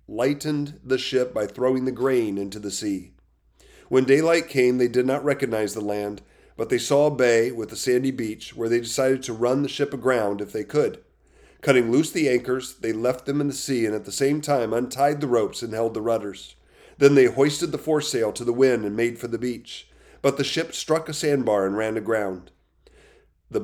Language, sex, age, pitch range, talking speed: English, male, 30-49, 105-135 Hz, 215 wpm